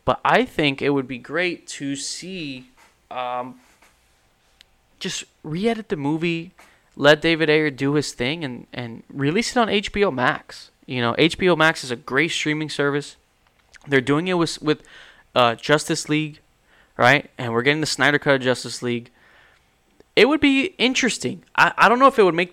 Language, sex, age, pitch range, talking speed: English, male, 20-39, 120-150 Hz, 175 wpm